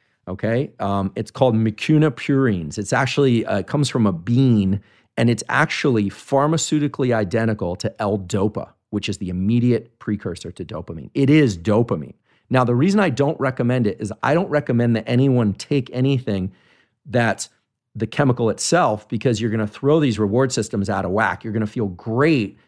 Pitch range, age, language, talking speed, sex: 105-130 Hz, 40-59, English, 170 wpm, male